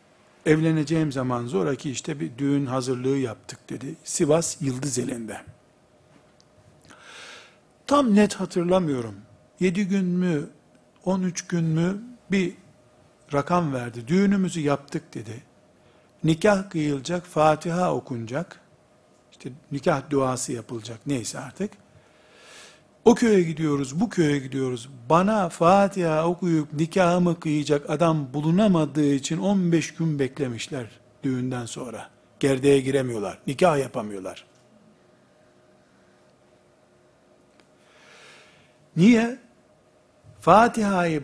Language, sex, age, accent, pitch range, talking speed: Turkish, male, 60-79, native, 135-185 Hz, 90 wpm